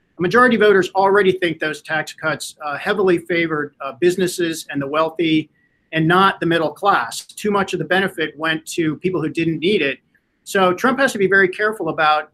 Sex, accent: male, American